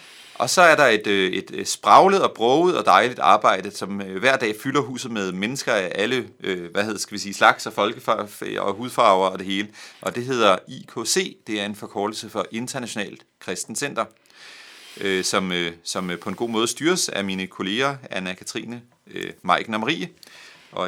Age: 30-49